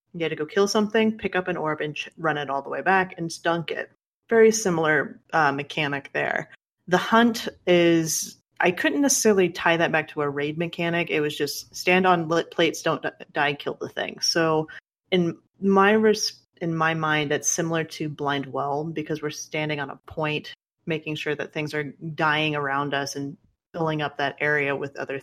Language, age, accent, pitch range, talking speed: English, 30-49, American, 150-175 Hz, 200 wpm